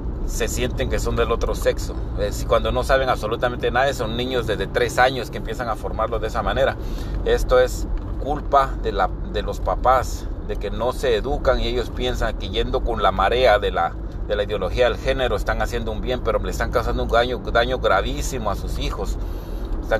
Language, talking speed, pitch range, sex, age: English, 205 wpm, 100-125 Hz, male, 40-59